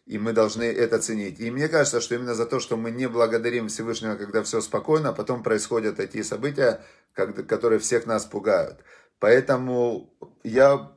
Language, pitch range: Russian, 110-130 Hz